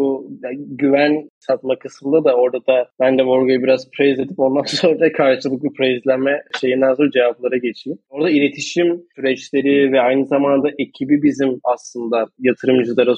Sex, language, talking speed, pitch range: male, Turkish, 140 wpm, 125-145 Hz